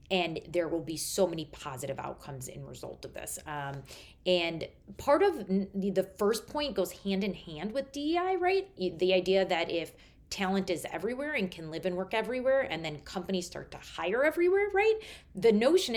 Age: 30-49